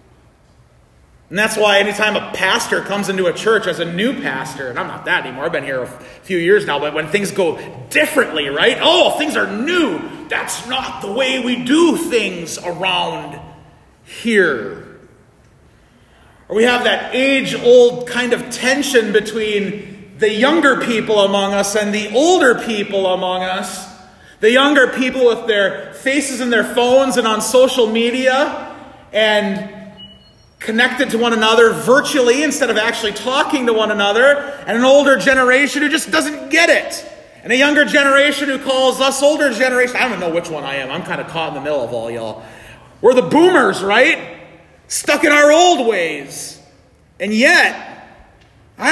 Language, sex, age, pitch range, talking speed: English, male, 30-49, 210-285 Hz, 170 wpm